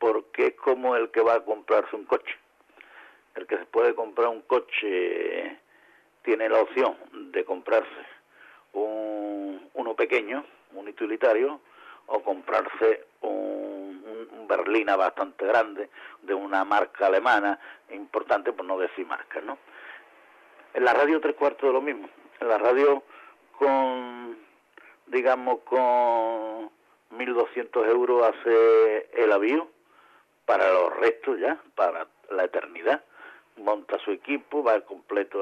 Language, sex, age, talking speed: Spanish, male, 50-69, 125 wpm